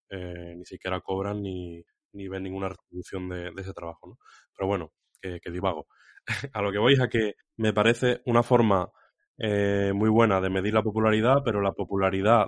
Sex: male